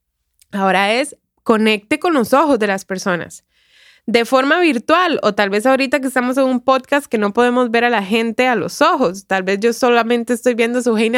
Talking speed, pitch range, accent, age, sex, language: 215 wpm, 205-265 Hz, Venezuelan, 20-39, female, Spanish